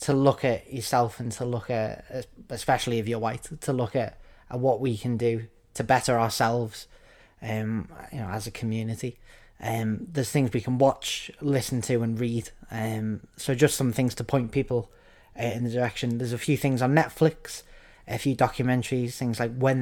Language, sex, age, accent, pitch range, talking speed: English, male, 20-39, British, 110-130 Hz, 190 wpm